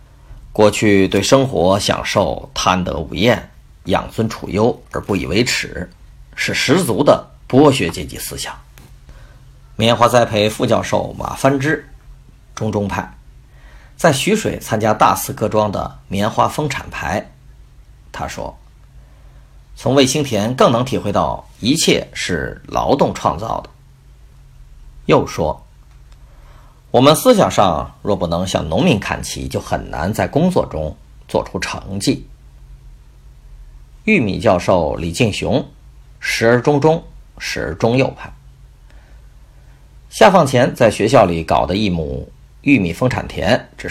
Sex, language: male, Chinese